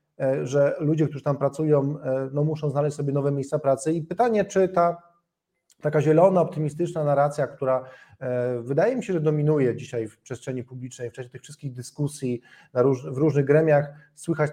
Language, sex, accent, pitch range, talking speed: Polish, male, native, 135-155 Hz, 175 wpm